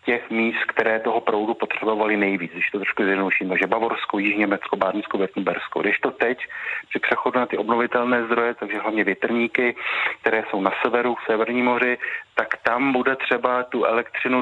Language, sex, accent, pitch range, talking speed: Czech, male, native, 110-125 Hz, 165 wpm